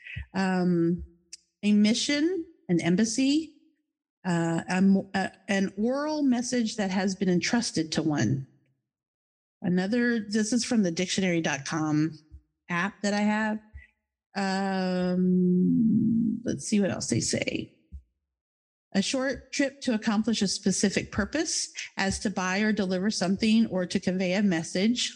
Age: 50-69